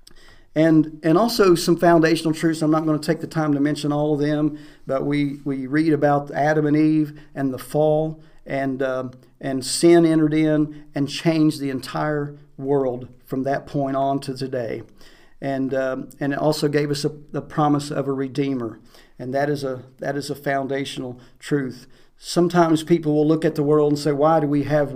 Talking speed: 195 wpm